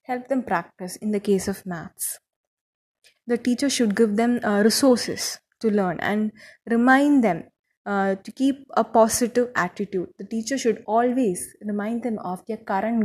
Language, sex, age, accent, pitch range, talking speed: English, female, 20-39, Indian, 200-255 Hz, 160 wpm